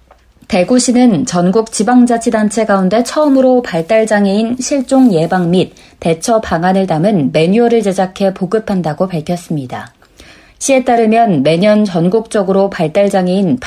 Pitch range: 175-230 Hz